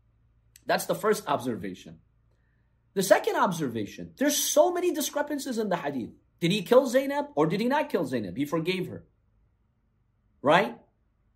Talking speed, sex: 150 wpm, male